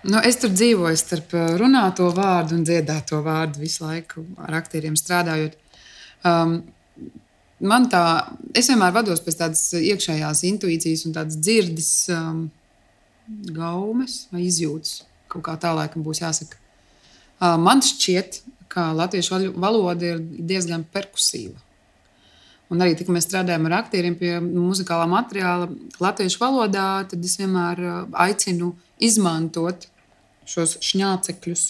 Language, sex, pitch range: English, female, 165-195 Hz